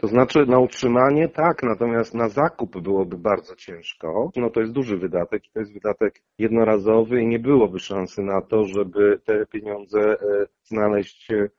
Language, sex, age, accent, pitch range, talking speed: Polish, male, 40-59, native, 105-145 Hz, 155 wpm